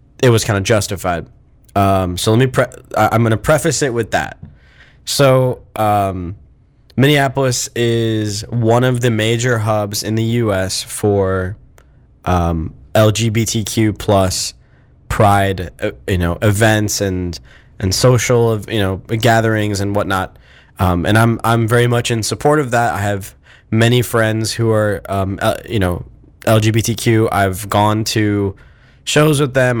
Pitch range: 100-120 Hz